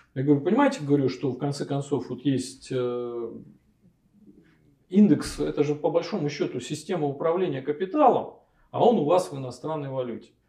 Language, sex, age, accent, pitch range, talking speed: Russian, male, 40-59, native, 140-205 Hz, 155 wpm